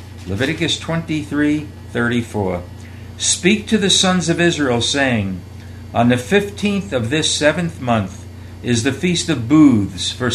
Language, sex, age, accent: English, male, 60-79, American